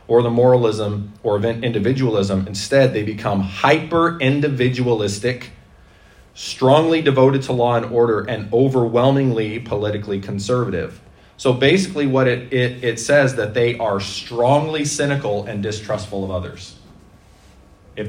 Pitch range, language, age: 95-125 Hz, English, 30-49